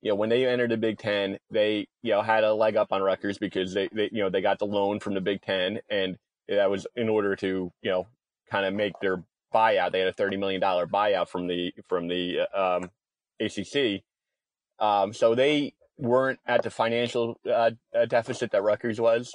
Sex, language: male, English